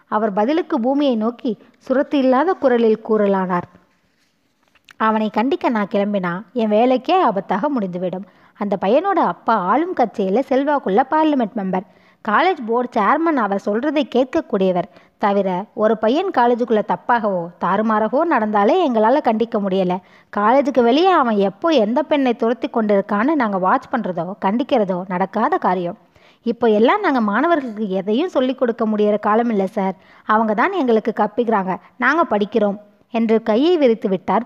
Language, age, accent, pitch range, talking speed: Tamil, 20-39, native, 205-275 Hz, 130 wpm